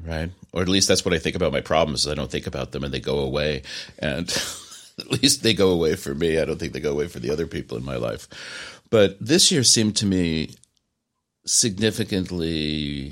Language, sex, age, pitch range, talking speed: English, male, 40-59, 80-110 Hz, 225 wpm